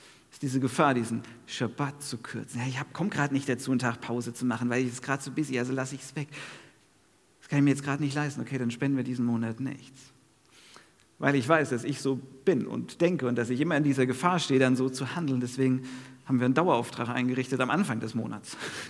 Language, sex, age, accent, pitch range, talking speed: German, male, 50-69, German, 120-145 Hz, 230 wpm